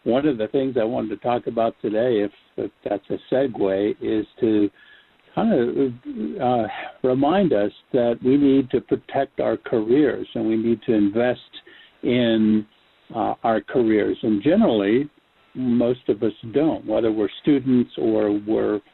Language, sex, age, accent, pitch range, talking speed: English, male, 50-69, American, 110-135 Hz, 155 wpm